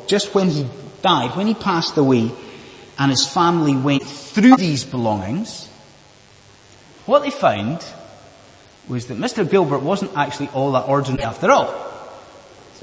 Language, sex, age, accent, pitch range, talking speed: English, male, 30-49, British, 130-215 Hz, 140 wpm